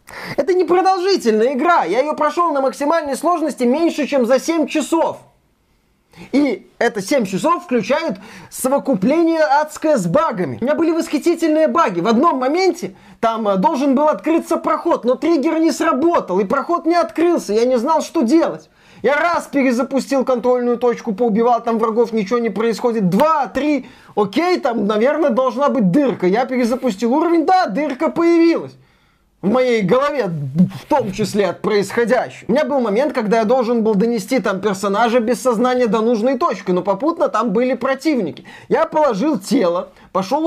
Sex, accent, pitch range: male, native, 225-310 Hz